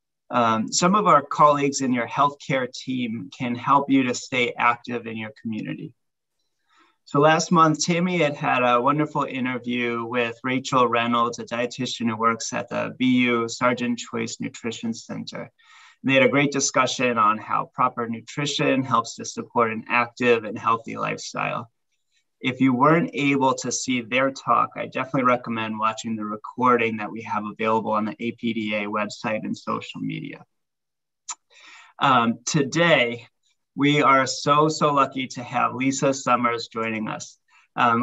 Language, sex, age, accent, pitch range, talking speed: English, male, 20-39, American, 115-140 Hz, 155 wpm